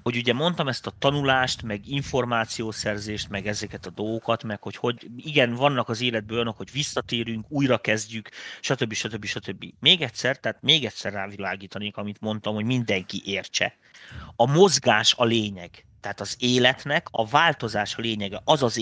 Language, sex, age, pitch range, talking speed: Hungarian, male, 30-49, 105-130 Hz, 165 wpm